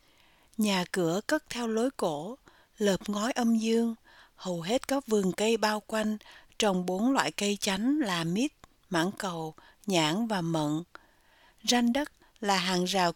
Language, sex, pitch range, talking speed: Vietnamese, female, 185-230 Hz, 155 wpm